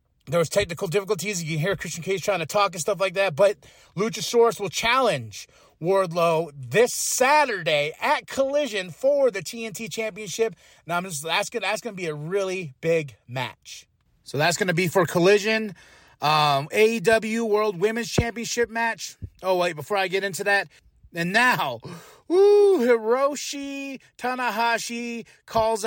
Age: 30-49